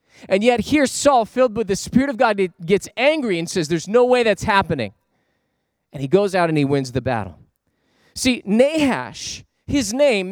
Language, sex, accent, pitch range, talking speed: English, male, American, 155-250 Hz, 185 wpm